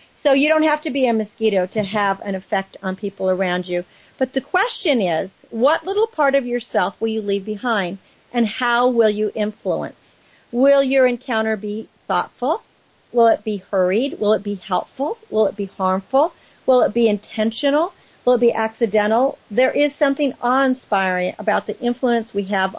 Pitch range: 200-255 Hz